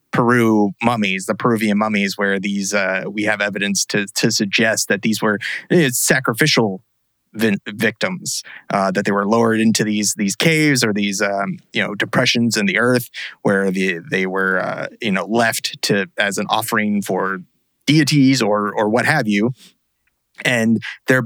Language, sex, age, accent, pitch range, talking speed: English, male, 30-49, American, 105-130 Hz, 165 wpm